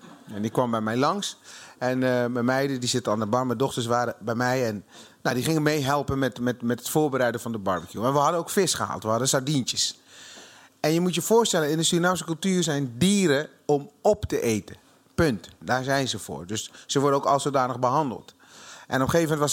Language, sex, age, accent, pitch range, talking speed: Dutch, male, 30-49, Dutch, 125-165 Hz, 230 wpm